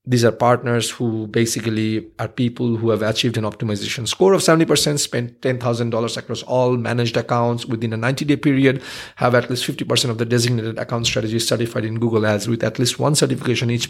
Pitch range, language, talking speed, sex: 115-135 Hz, English, 190 wpm, male